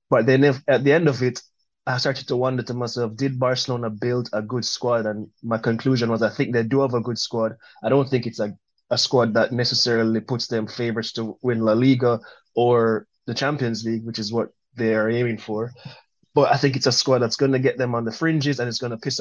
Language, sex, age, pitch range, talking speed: English, male, 20-39, 115-135 Hz, 245 wpm